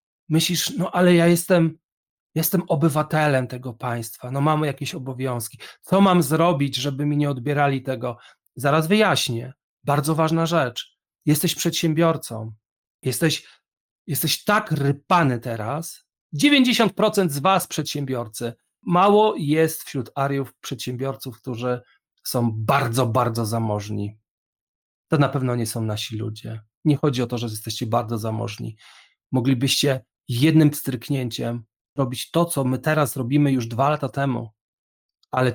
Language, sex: Polish, male